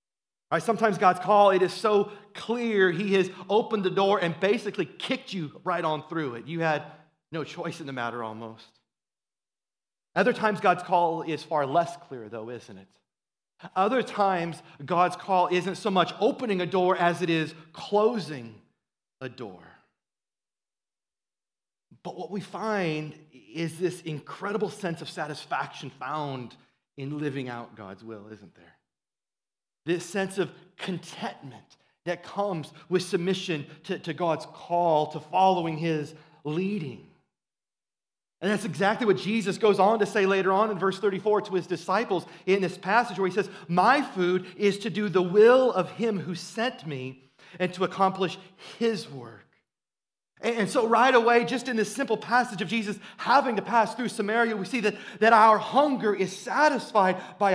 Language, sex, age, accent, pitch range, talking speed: English, male, 30-49, American, 160-210 Hz, 160 wpm